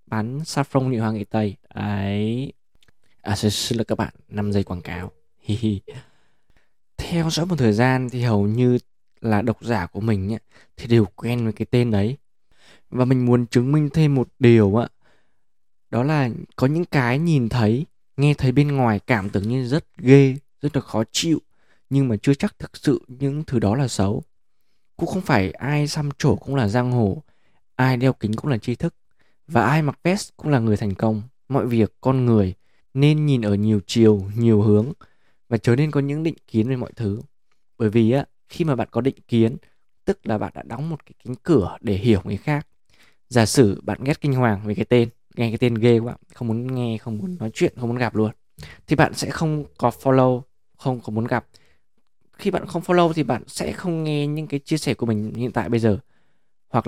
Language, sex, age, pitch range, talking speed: Vietnamese, male, 20-39, 110-140 Hz, 215 wpm